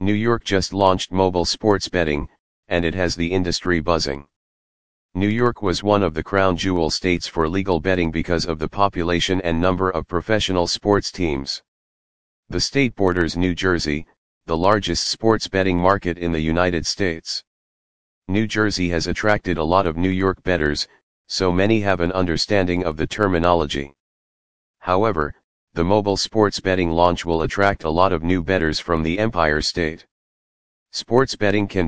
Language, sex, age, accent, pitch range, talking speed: English, male, 40-59, American, 80-100 Hz, 165 wpm